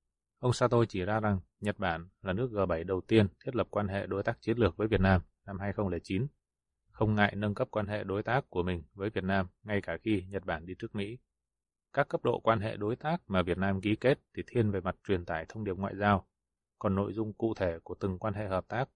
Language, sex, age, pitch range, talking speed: Vietnamese, male, 20-39, 95-110 Hz, 250 wpm